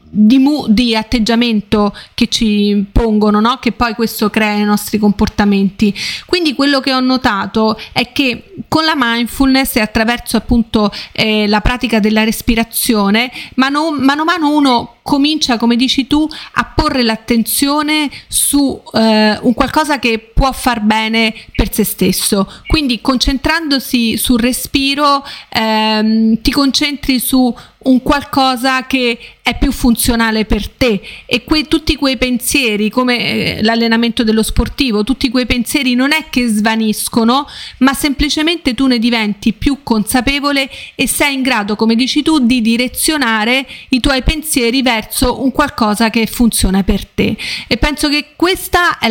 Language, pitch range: Italian, 220-275 Hz